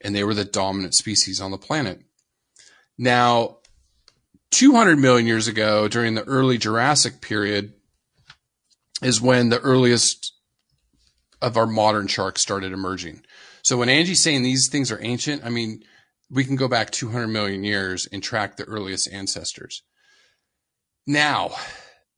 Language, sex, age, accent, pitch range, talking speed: English, male, 30-49, American, 100-135 Hz, 140 wpm